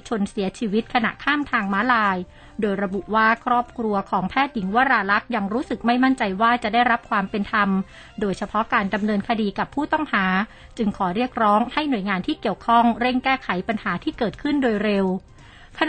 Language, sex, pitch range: Thai, female, 200-245 Hz